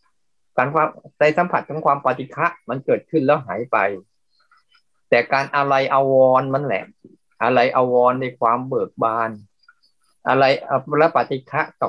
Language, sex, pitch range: Thai, male, 125-170 Hz